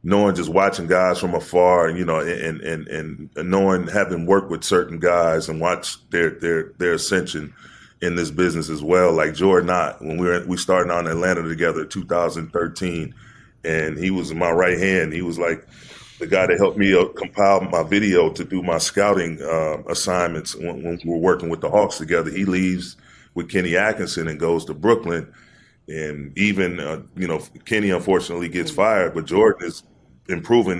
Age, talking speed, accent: 30-49, 185 wpm, American